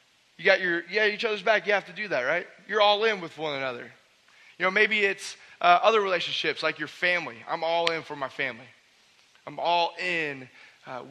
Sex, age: male, 30-49